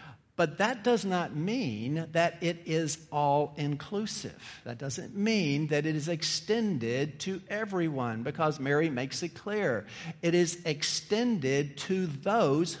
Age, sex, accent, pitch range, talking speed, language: 50-69, male, American, 145-190 Hz, 130 wpm, English